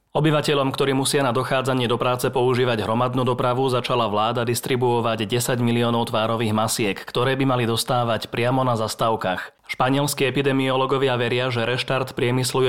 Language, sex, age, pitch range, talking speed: Slovak, male, 30-49, 115-135 Hz, 140 wpm